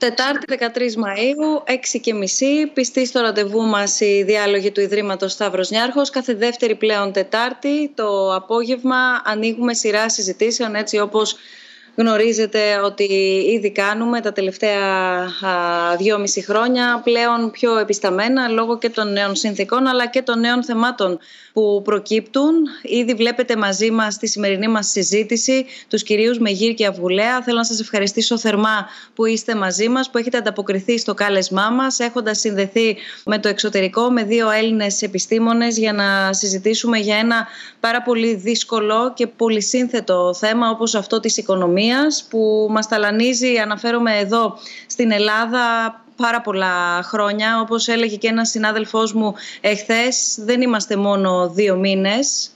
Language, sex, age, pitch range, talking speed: Greek, female, 30-49, 205-235 Hz, 145 wpm